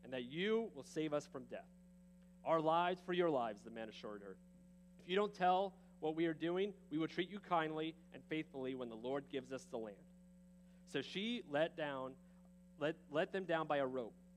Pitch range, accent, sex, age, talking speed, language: 150-180 Hz, American, male, 30-49, 200 wpm, English